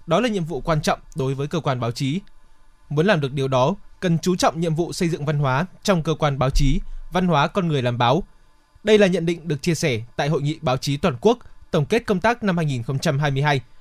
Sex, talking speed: male, 250 wpm